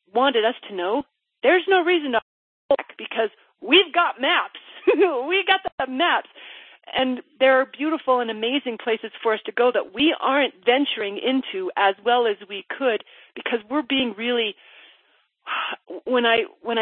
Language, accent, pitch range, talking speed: English, American, 190-255 Hz, 160 wpm